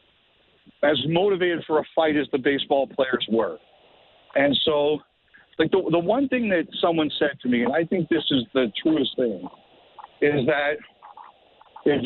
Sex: male